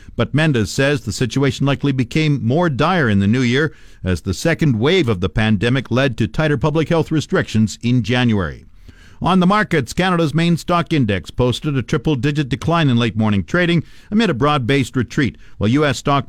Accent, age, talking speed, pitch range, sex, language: American, 50-69, 180 wpm, 120-160 Hz, male, English